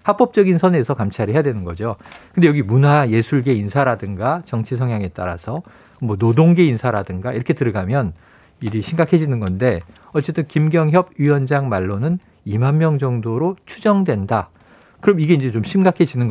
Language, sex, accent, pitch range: Korean, male, native, 115-170 Hz